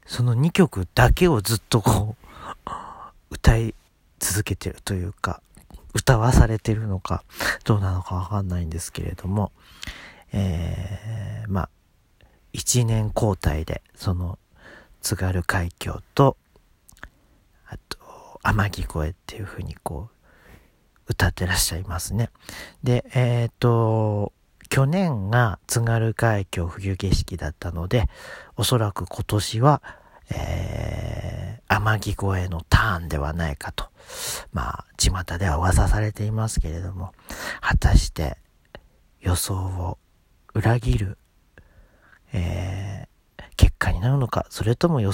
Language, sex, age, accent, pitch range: Japanese, male, 40-59, native, 90-110 Hz